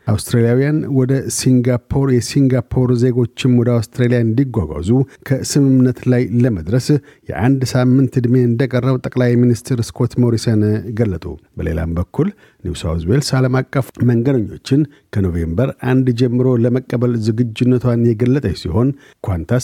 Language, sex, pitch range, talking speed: Amharic, male, 115-130 Hz, 105 wpm